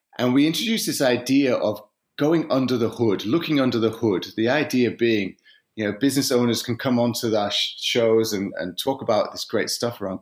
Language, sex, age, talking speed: English, male, 30-49, 200 wpm